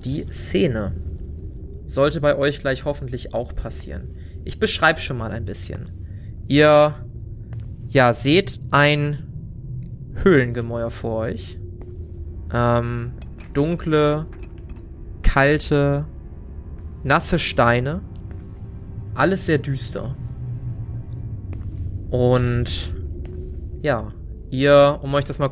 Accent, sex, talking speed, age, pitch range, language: German, male, 85 wpm, 20-39, 95-140 Hz, German